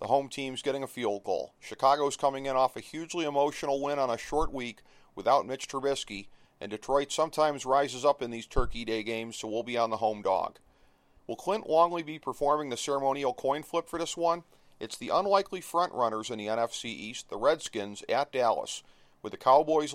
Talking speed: 200 wpm